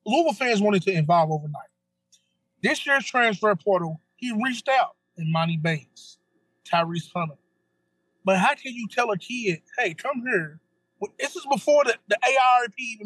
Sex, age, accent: male, 20-39, American